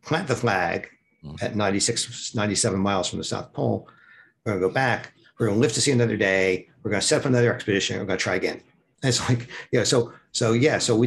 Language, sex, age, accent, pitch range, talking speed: English, male, 60-79, American, 100-120 Hz, 230 wpm